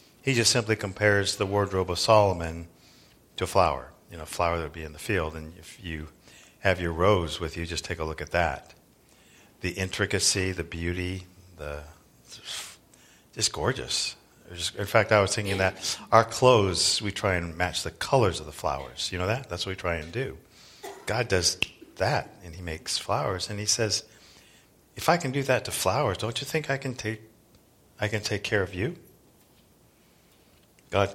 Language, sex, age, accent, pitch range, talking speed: English, male, 40-59, American, 85-105 Hz, 190 wpm